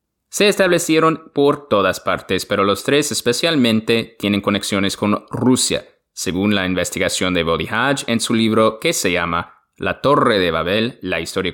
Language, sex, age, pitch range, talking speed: English, male, 20-39, 95-120 Hz, 155 wpm